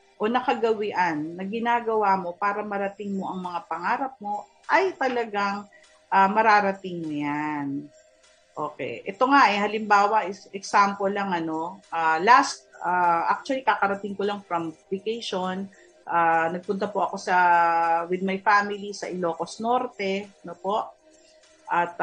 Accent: native